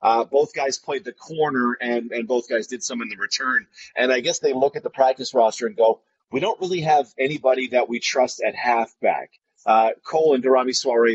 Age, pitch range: 30-49, 120-150 Hz